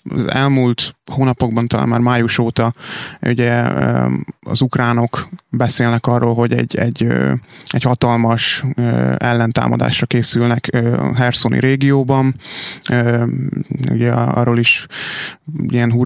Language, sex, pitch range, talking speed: Hungarian, male, 115-130 Hz, 95 wpm